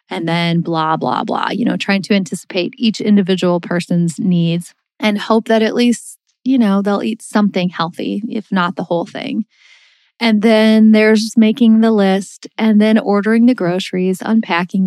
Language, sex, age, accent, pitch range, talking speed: English, female, 30-49, American, 190-235 Hz, 170 wpm